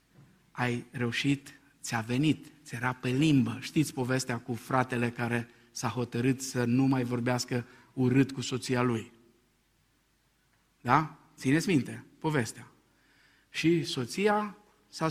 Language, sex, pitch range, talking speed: Romanian, male, 125-175 Hz, 115 wpm